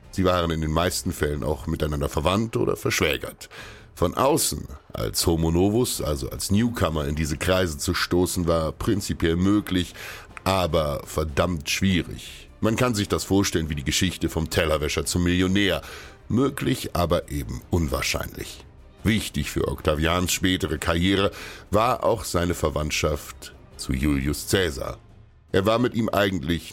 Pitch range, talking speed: 80-95 Hz, 140 wpm